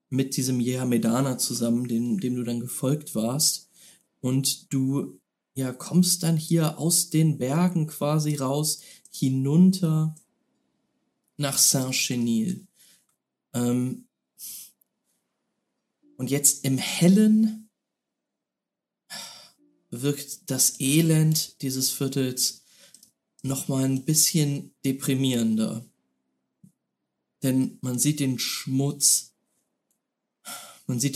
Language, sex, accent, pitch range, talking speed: German, male, German, 125-165 Hz, 90 wpm